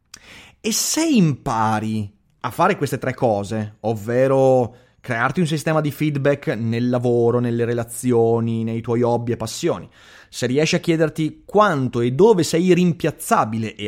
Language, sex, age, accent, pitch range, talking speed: Italian, male, 30-49, native, 120-180 Hz, 145 wpm